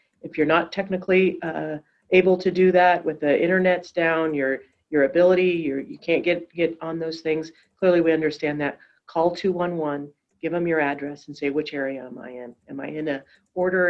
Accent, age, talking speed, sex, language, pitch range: American, 40-59, 200 wpm, female, English, 145-165 Hz